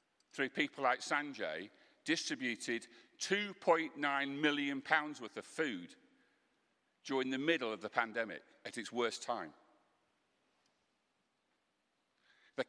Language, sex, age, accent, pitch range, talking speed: English, male, 50-69, British, 130-175 Hz, 105 wpm